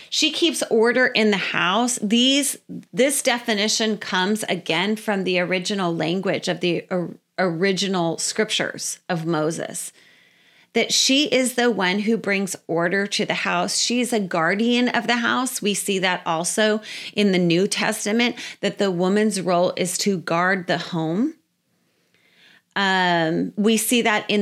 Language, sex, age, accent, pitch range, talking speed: English, female, 30-49, American, 180-230 Hz, 145 wpm